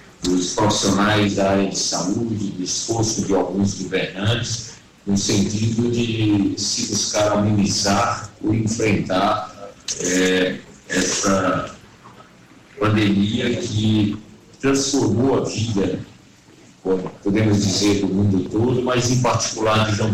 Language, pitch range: Portuguese, 100-120 Hz